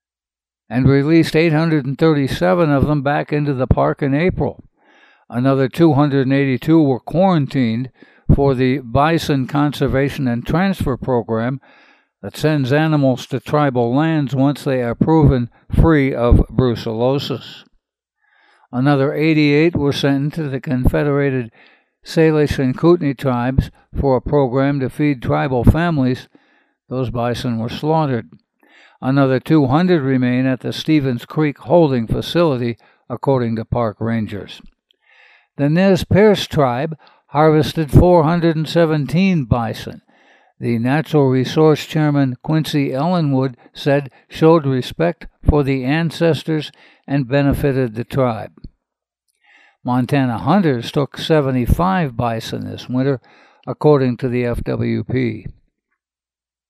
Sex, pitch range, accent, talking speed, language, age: male, 125-155 Hz, American, 110 wpm, English, 60-79